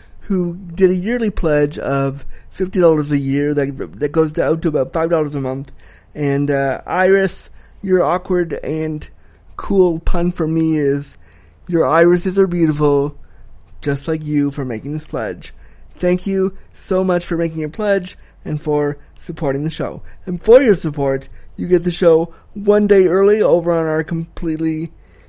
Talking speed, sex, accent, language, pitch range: 160 wpm, male, American, English, 145-190 Hz